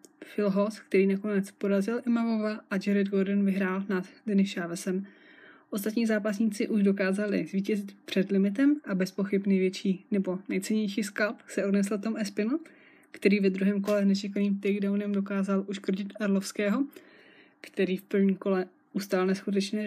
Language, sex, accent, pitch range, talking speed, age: Czech, female, native, 195-220 Hz, 135 wpm, 20-39